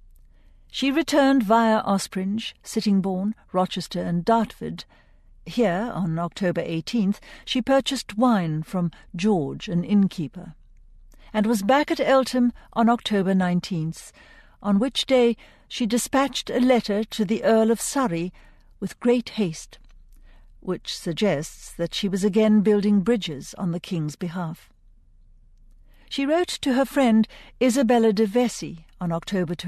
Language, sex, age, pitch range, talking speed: English, female, 60-79, 175-235 Hz, 130 wpm